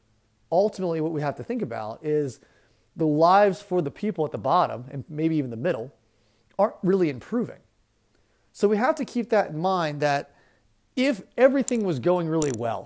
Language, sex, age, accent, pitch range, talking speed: English, male, 30-49, American, 120-175 Hz, 180 wpm